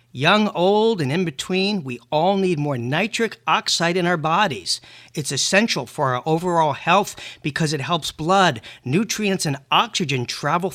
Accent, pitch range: American, 155-195 Hz